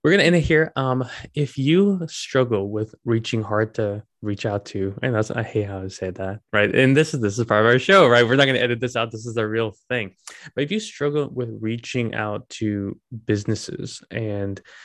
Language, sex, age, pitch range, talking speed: English, male, 20-39, 105-125 Hz, 225 wpm